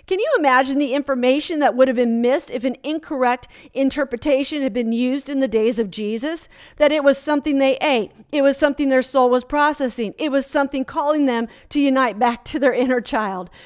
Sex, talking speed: female, 205 wpm